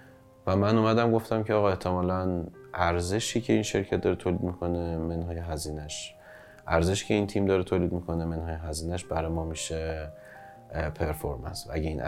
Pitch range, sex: 85-105 Hz, male